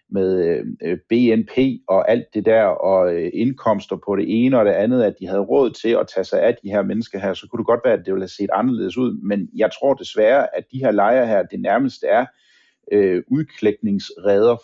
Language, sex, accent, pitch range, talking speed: Danish, male, native, 100-130 Hz, 215 wpm